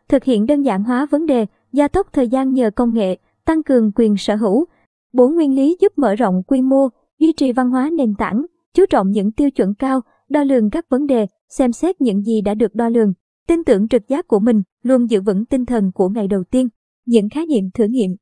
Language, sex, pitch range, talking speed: Vietnamese, male, 220-275 Hz, 235 wpm